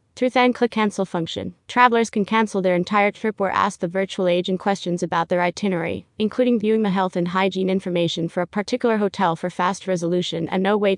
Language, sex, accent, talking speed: English, female, American, 195 wpm